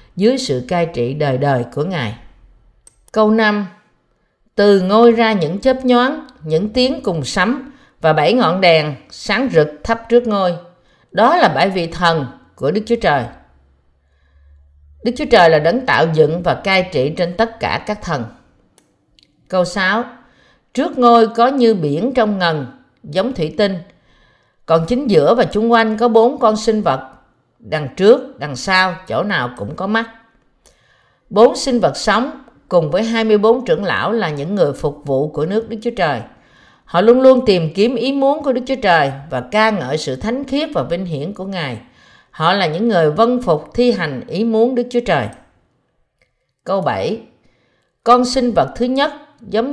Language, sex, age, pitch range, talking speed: Vietnamese, female, 50-69, 160-235 Hz, 175 wpm